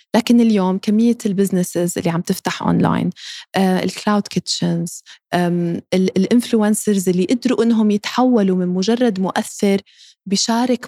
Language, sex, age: Arabic, female, 20-39